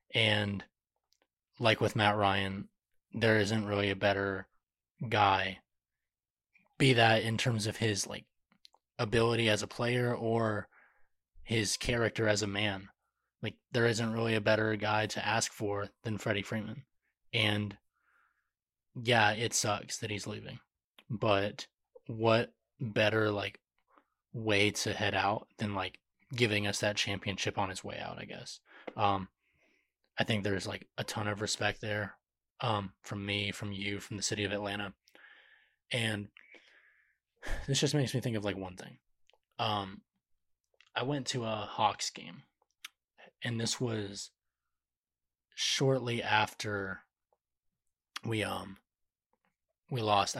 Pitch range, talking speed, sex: 100-115 Hz, 135 wpm, male